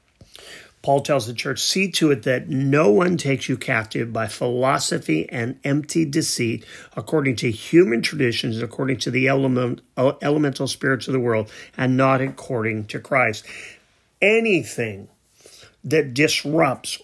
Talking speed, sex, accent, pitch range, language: 135 wpm, male, American, 115-145 Hz, English